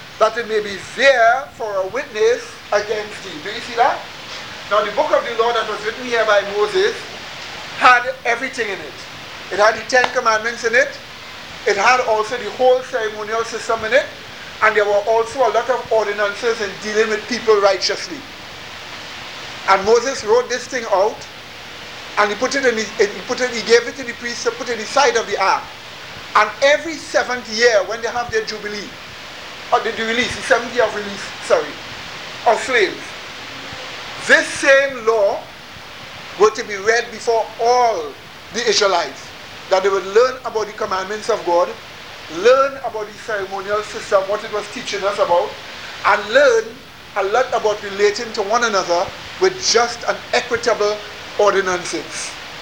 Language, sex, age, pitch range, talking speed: English, male, 50-69, 210-255 Hz, 180 wpm